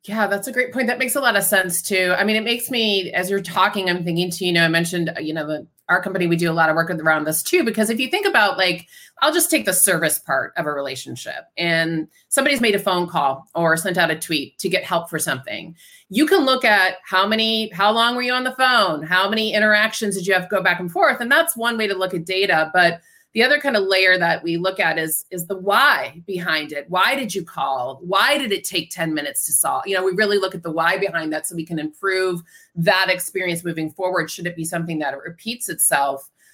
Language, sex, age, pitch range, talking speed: English, female, 30-49, 165-210 Hz, 260 wpm